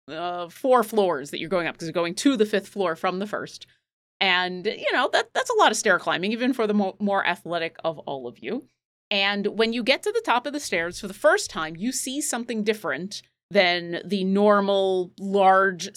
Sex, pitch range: female, 180-235 Hz